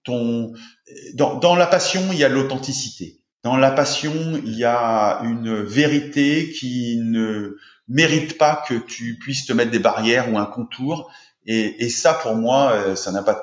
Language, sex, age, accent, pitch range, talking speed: French, male, 30-49, French, 110-140 Hz, 165 wpm